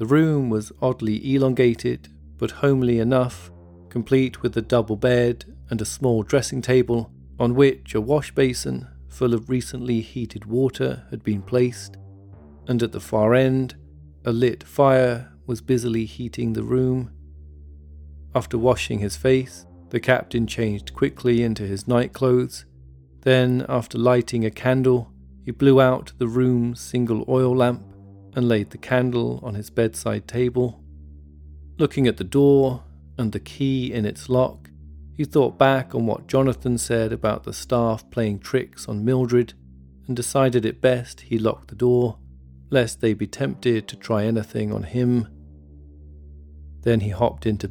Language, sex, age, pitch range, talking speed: English, male, 40-59, 85-125 Hz, 150 wpm